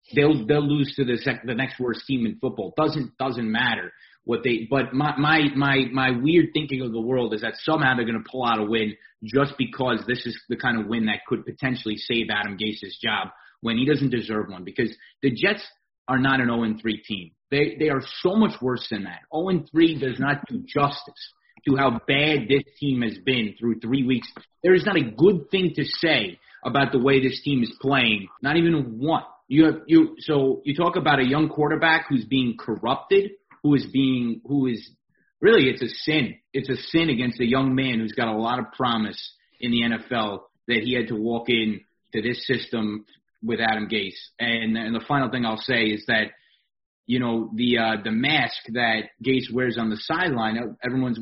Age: 30-49